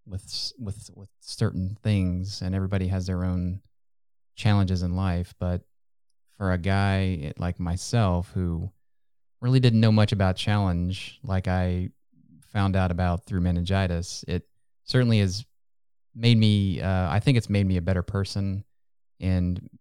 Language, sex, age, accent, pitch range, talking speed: English, male, 20-39, American, 90-105 Hz, 145 wpm